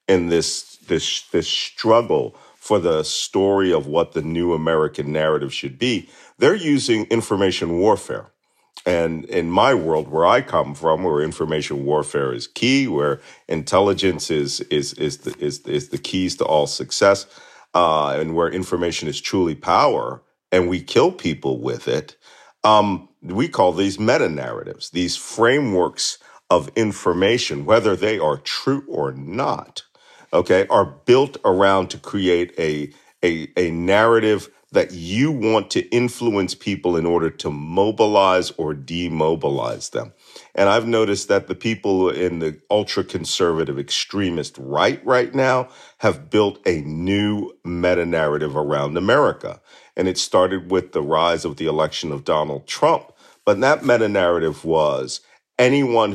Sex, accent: male, American